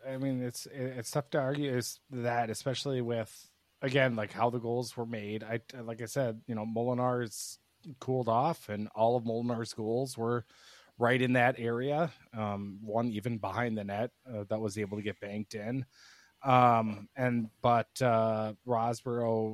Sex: male